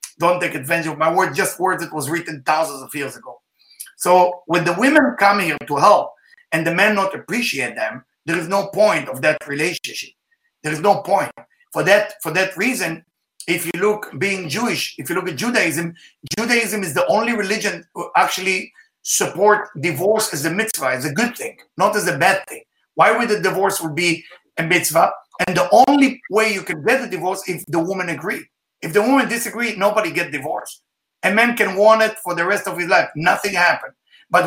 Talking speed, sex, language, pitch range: 205 wpm, male, English, 170-230 Hz